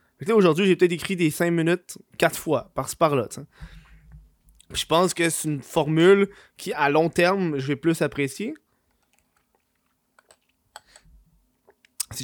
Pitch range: 130-175 Hz